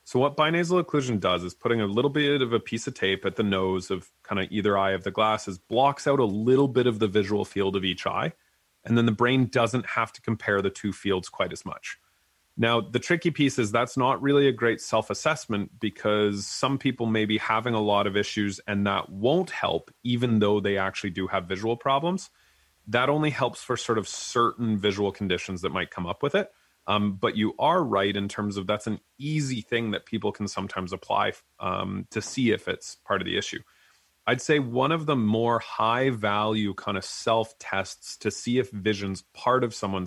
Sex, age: male, 30-49